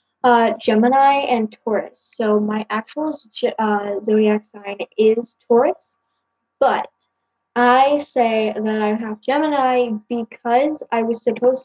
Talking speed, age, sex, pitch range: 125 wpm, 10-29, female, 215-260 Hz